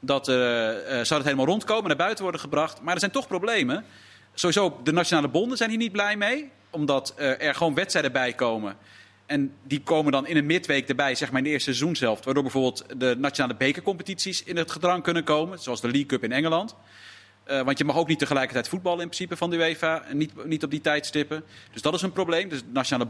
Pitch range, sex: 135-170 Hz, male